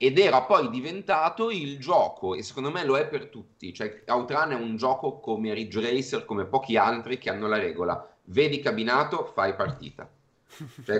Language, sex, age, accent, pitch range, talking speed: Italian, male, 30-49, native, 110-155 Hz, 180 wpm